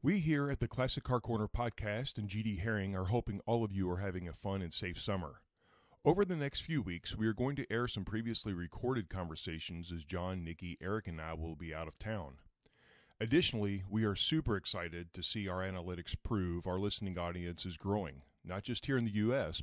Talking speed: 210 wpm